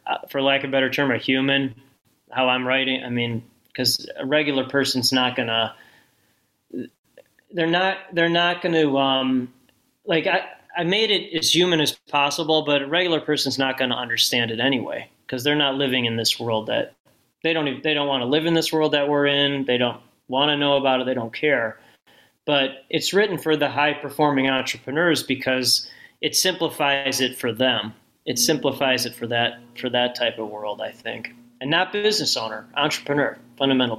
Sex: male